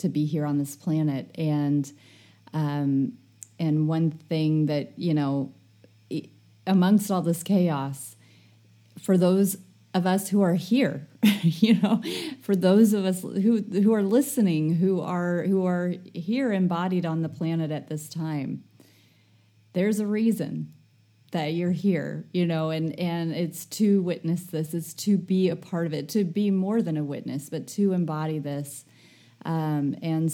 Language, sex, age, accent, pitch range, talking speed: English, female, 30-49, American, 150-185 Hz, 160 wpm